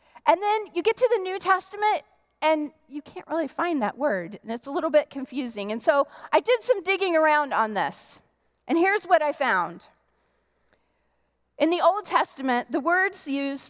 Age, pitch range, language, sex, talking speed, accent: 30-49, 240-325 Hz, English, female, 185 wpm, American